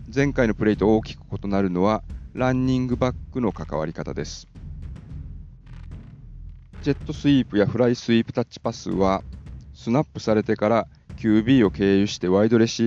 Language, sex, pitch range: Japanese, male, 85-120 Hz